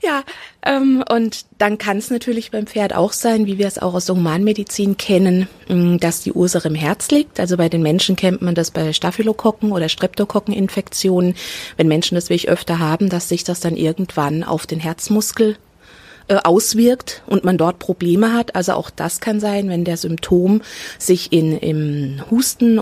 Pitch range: 165-210 Hz